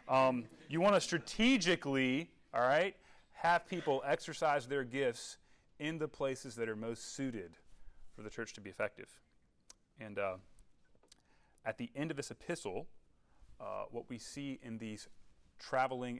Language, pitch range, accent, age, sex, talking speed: English, 110-135 Hz, American, 30-49, male, 150 wpm